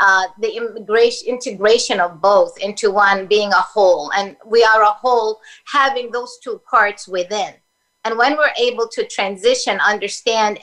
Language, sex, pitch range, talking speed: English, female, 205-285 Hz, 160 wpm